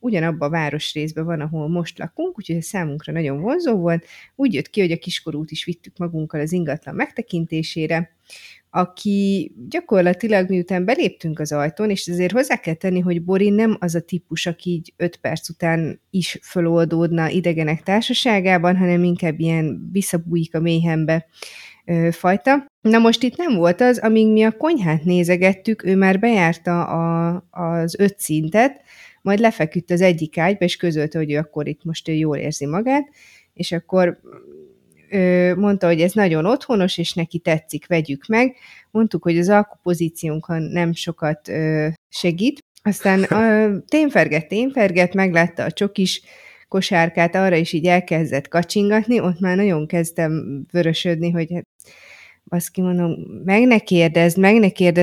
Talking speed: 150 wpm